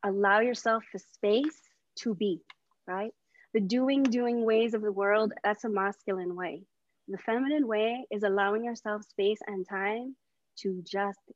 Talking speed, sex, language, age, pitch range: 155 wpm, female, English, 20-39, 200-230 Hz